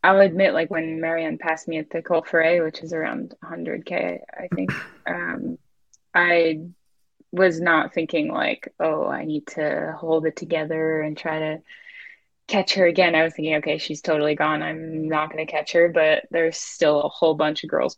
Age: 10-29